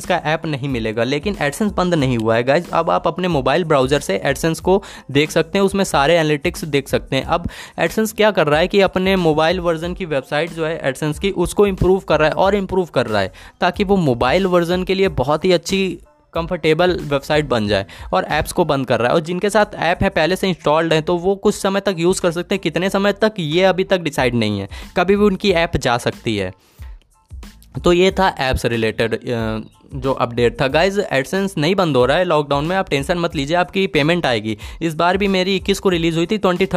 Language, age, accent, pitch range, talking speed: Hindi, 10-29, native, 145-190 Hz, 225 wpm